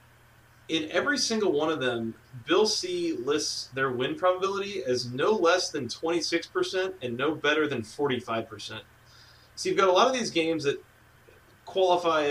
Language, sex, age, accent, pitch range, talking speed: English, male, 30-49, American, 120-170 Hz, 155 wpm